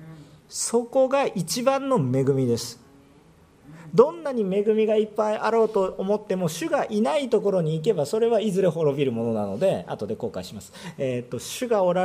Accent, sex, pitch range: native, male, 120-190 Hz